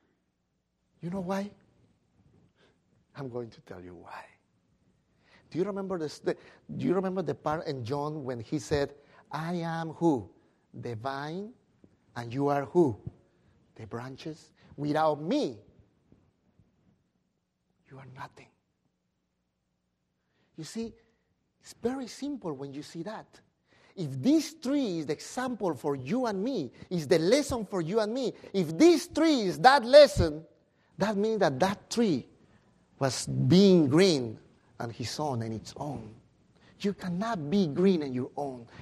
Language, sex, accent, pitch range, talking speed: English, male, Mexican, 130-195 Hz, 145 wpm